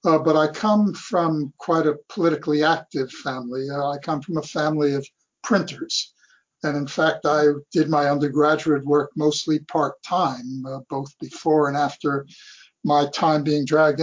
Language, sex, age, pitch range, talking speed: English, male, 60-79, 145-175 Hz, 155 wpm